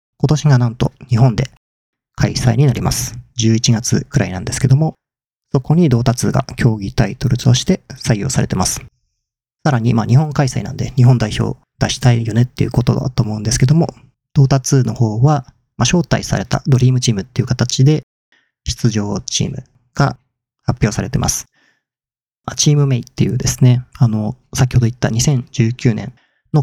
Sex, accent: male, native